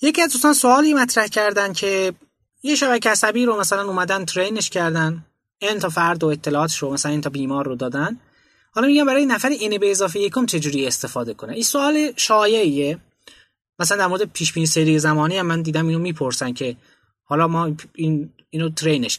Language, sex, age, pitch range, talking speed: Persian, male, 20-39, 140-200 Hz, 185 wpm